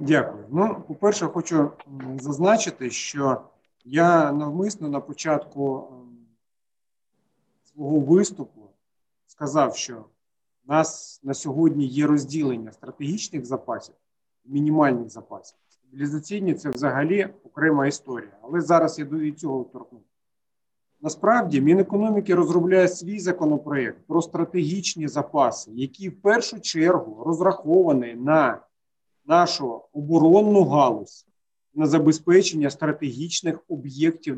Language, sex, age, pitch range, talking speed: Ukrainian, male, 40-59, 140-175 Hz, 100 wpm